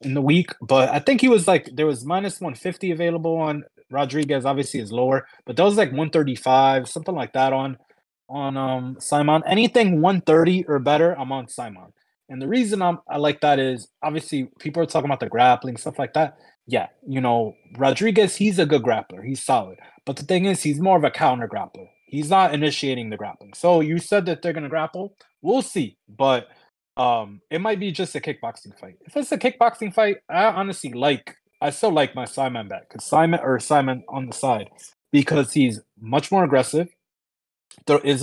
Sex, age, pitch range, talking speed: male, 20-39, 130-170 Hz, 195 wpm